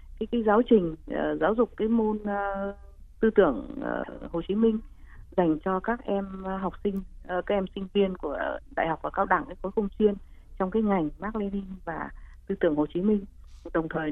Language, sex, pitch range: Vietnamese, female, 185-235 Hz